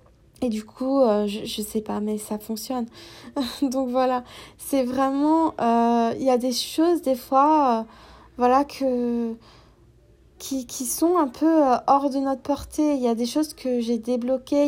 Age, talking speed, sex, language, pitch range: 20-39, 180 wpm, female, French, 240-275 Hz